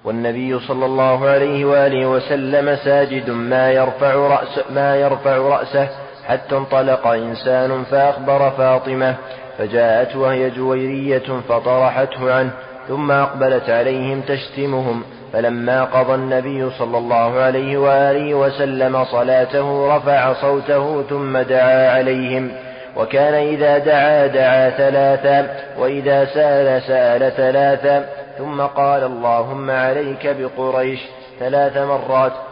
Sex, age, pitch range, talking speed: male, 20-39, 130-140 Hz, 105 wpm